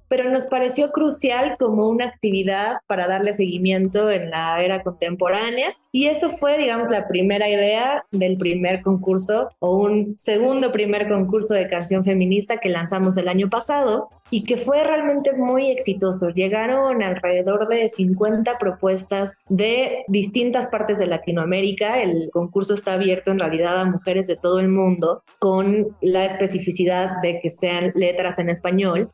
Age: 20-39